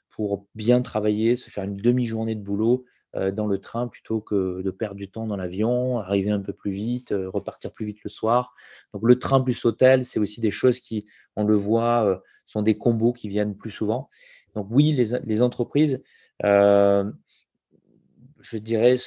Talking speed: 190 wpm